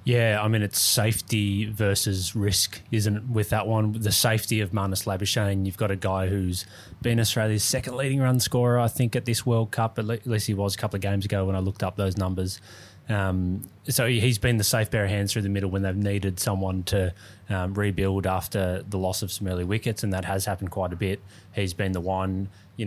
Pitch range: 95-110 Hz